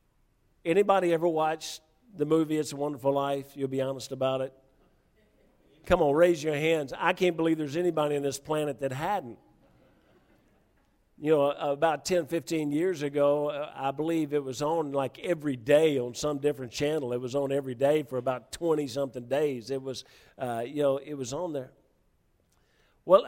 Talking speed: 175 wpm